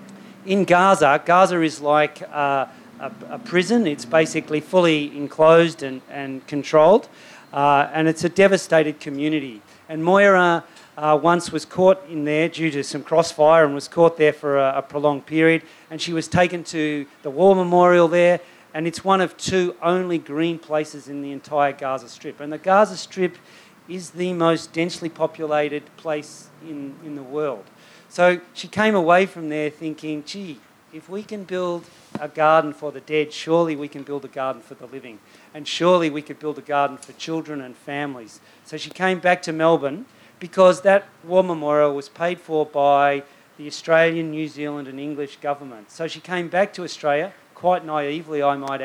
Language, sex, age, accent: English, male, 40-59, Australian